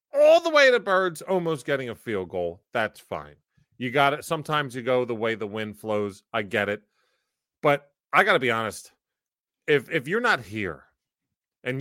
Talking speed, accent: 195 wpm, American